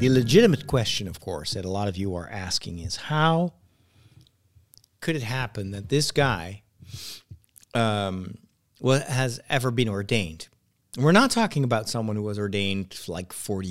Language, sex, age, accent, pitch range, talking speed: English, male, 40-59, American, 100-130 Hz, 155 wpm